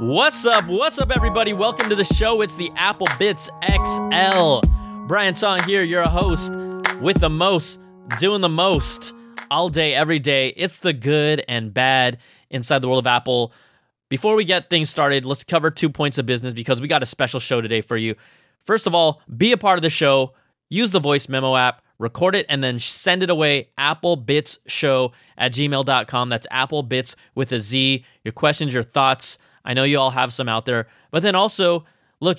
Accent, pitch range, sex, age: American, 130-180 Hz, male, 20-39